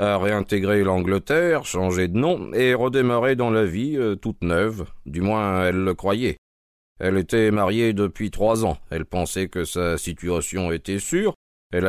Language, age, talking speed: French, 50-69, 165 wpm